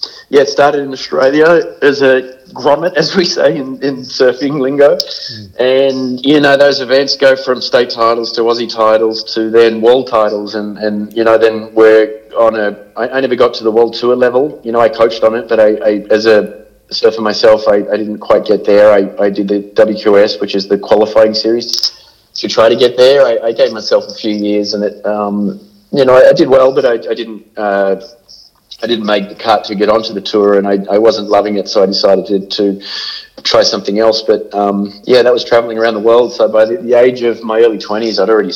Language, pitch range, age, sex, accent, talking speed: English, 105-120 Hz, 30-49, male, Australian, 230 wpm